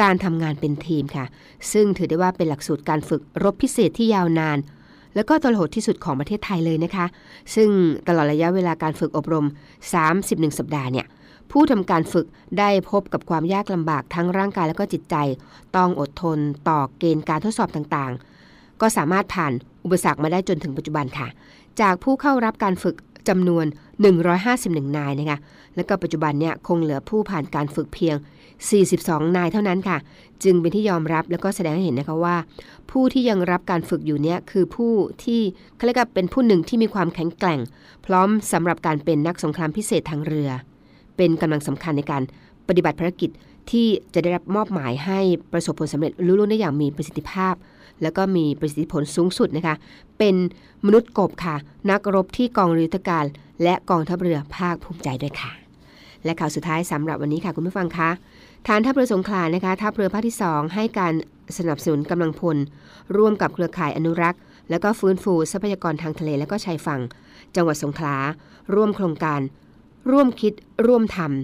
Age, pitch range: 60-79, 155-195 Hz